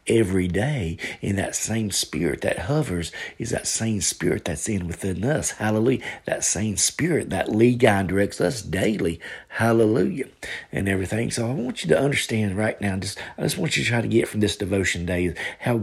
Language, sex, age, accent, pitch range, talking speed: English, male, 40-59, American, 90-120 Hz, 195 wpm